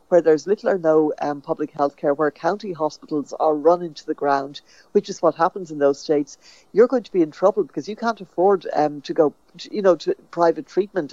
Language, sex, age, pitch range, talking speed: English, female, 60-79, 155-205 Hz, 225 wpm